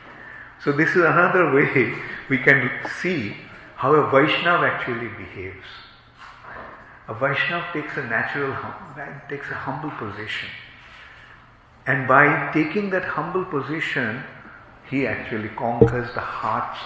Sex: male